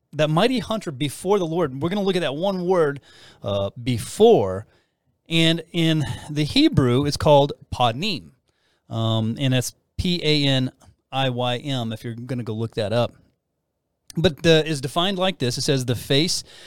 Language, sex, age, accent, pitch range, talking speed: English, male, 30-49, American, 130-175 Hz, 160 wpm